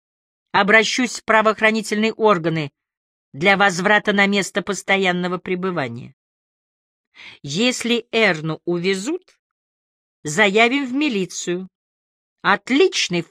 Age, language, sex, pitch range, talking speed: 40-59, English, female, 160-220 Hz, 75 wpm